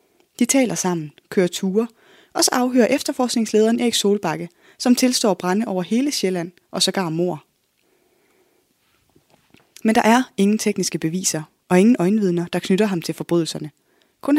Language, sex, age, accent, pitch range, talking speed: Danish, female, 20-39, native, 180-235 Hz, 150 wpm